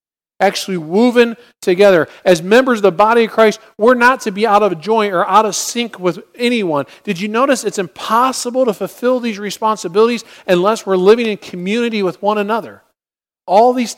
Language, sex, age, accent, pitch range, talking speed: English, male, 40-59, American, 180-220 Hz, 180 wpm